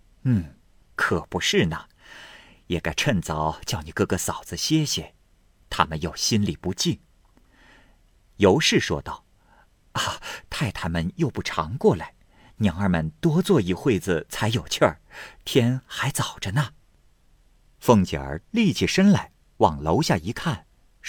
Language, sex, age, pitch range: Chinese, male, 50-69, 90-130 Hz